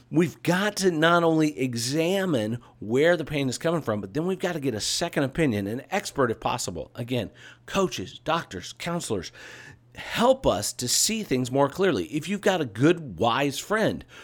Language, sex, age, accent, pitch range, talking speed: English, male, 50-69, American, 125-180 Hz, 180 wpm